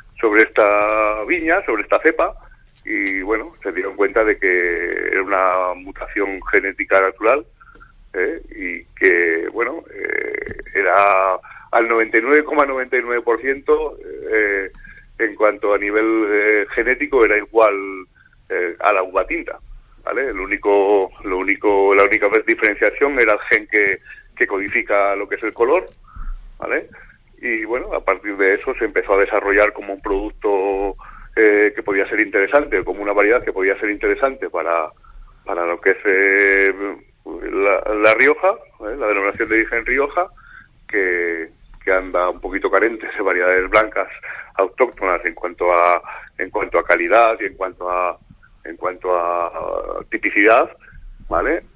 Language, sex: Spanish, male